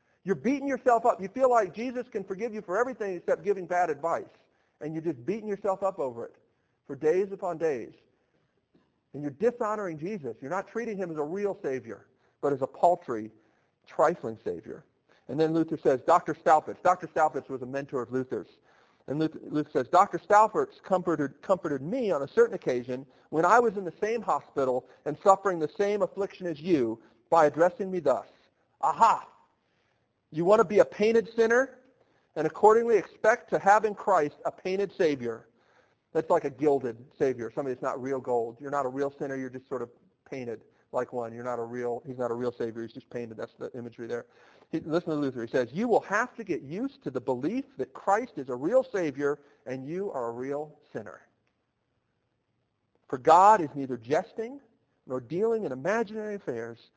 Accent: American